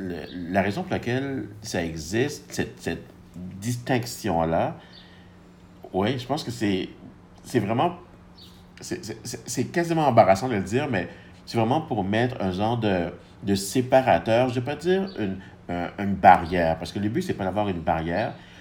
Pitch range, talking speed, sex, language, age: 90-110 Hz, 170 wpm, male, French, 60-79